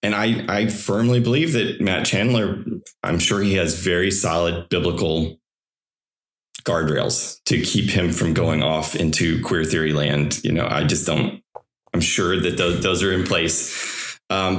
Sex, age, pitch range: male, 30-49, 85-110 Hz